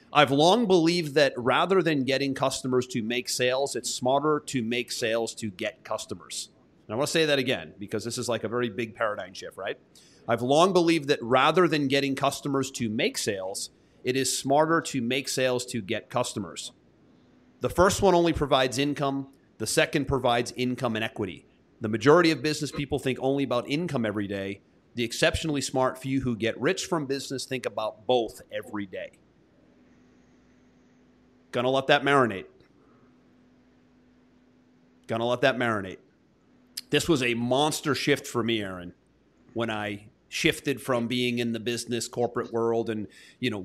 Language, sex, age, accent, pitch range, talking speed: English, male, 30-49, American, 115-140 Hz, 170 wpm